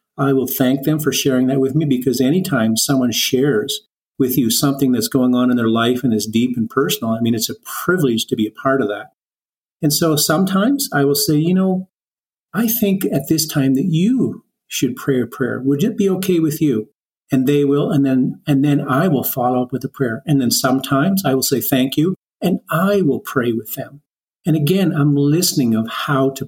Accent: American